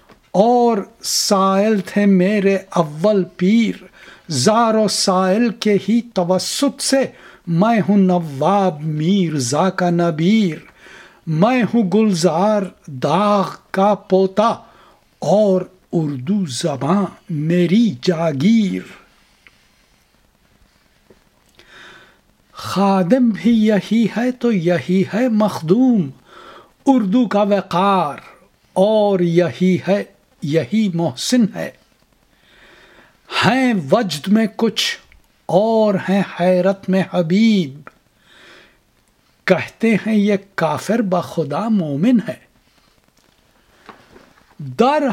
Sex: male